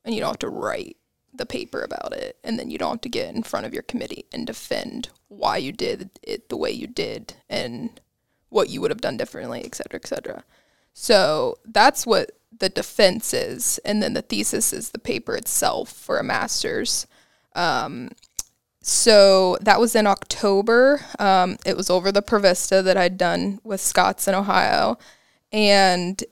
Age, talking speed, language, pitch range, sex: 20-39, 180 wpm, English, 190-240 Hz, female